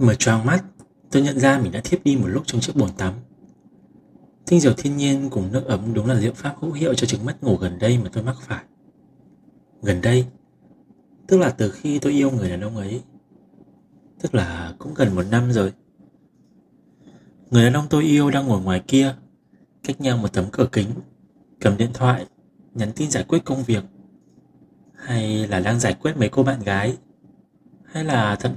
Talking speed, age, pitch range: 195 wpm, 20-39, 100-135 Hz